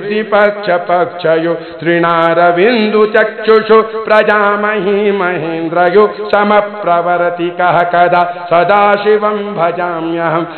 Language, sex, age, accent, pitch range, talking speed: Hindi, male, 50-69, native, 175-215 Hz, 70 wpm